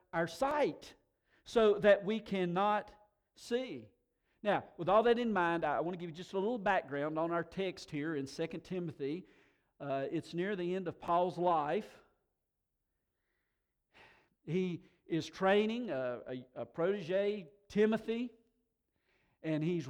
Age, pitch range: 50-69, 155-200 Hz